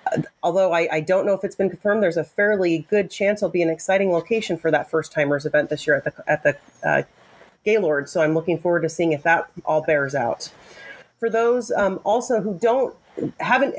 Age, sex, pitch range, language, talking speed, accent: 30-49, female, 170-215 Hz, English, 220 wpm, American